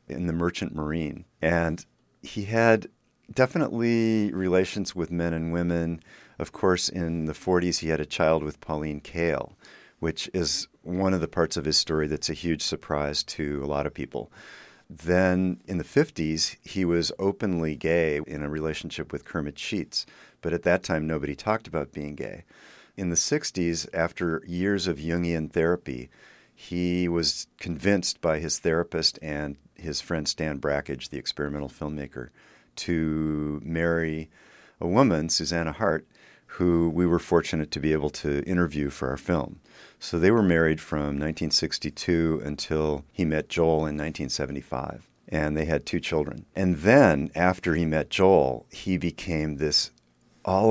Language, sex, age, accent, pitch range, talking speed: English, male, 40-59, American, 75-90 Hz, 155 wpm